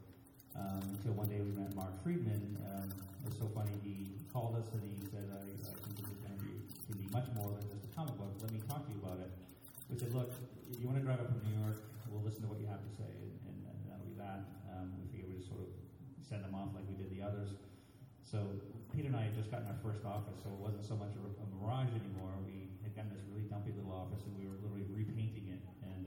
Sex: male